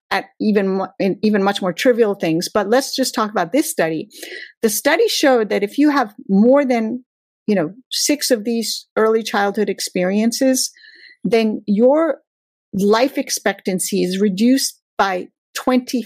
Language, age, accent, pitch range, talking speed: English, 50-69, American, 195-260 Hz, 145 wpm